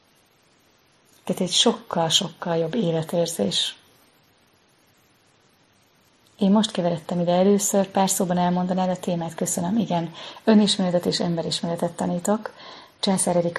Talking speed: 95 wpm